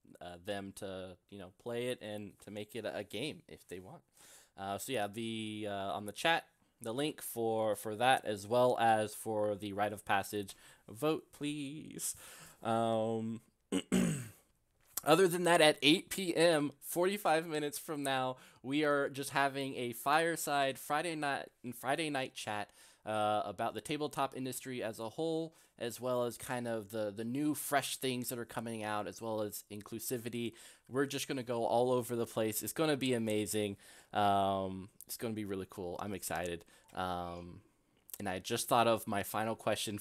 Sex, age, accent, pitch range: male, 20-39, American, 100-130 Hz